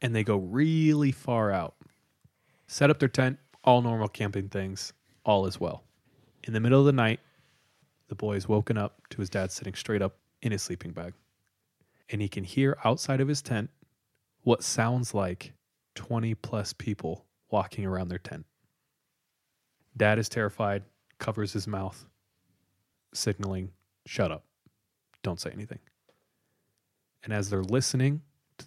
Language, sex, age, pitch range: English, male, 20-39, 100-125 Hz